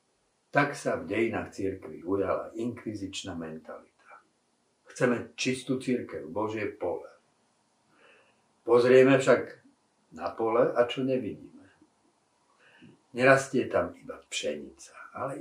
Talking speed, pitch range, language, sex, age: 95 wpm, 110-140 Hz, Slovak, male, 50-69